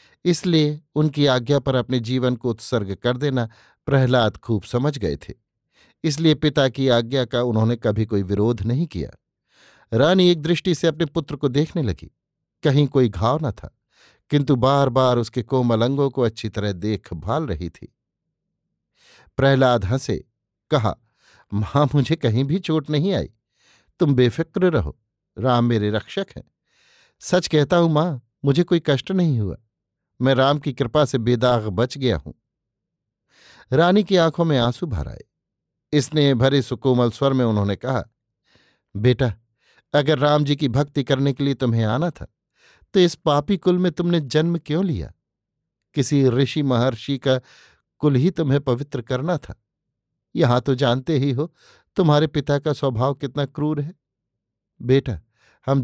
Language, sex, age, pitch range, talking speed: Hindi, male, 60-79, 120-150 Hz, 155 wpm